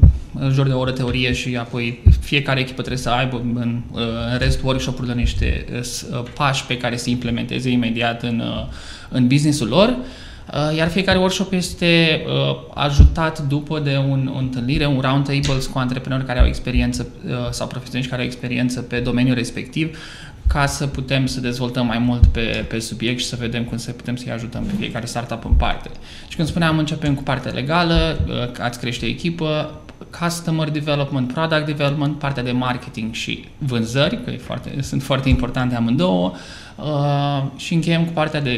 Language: Romanian